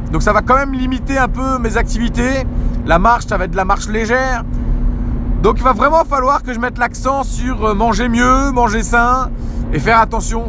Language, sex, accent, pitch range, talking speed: French, male, French, 210-270 Hz, 205 wpm